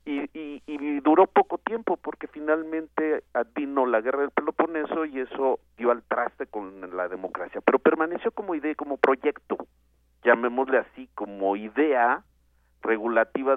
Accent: Mexican